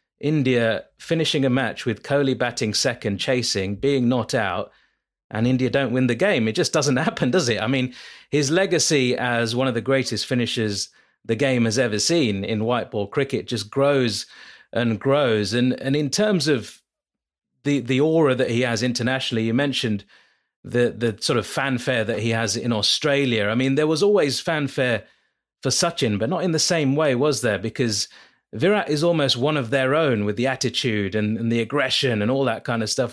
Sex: male